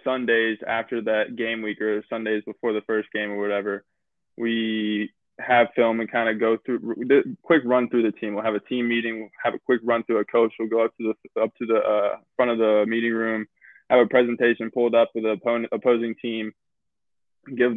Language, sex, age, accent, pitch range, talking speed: English, male, 20-39, American, 110-120 Hz, 220 wpm